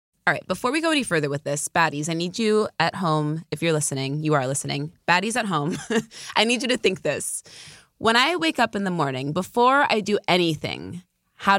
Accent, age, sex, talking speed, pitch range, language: American, 20-39, female, 220 wpm, 150-215 Hz, English